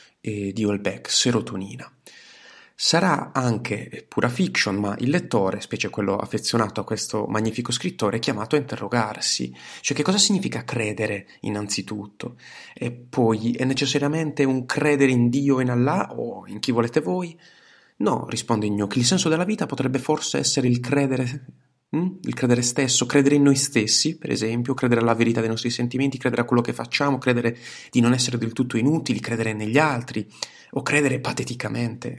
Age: 30-49